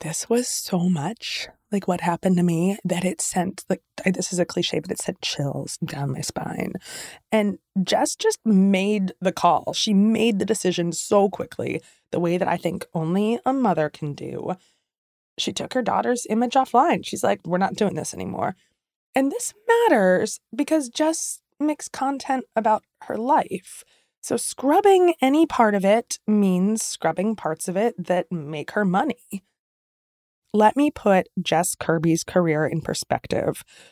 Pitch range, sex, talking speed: 175-255 Hz, female, 165 wpm